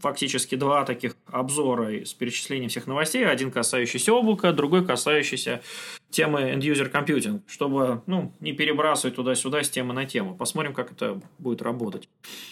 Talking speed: 145 wpm